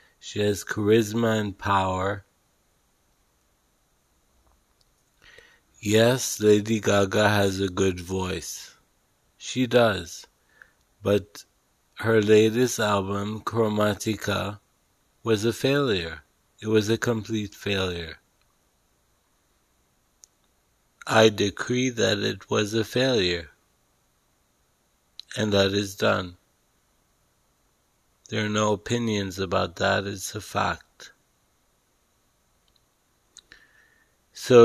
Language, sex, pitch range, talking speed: English, male, 95-110 Hz, 85 wpm